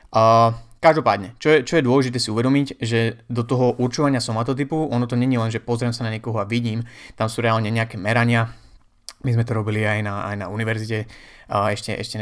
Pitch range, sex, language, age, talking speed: 110-125 Hz, male, Slovak, 20-39, 205 wpm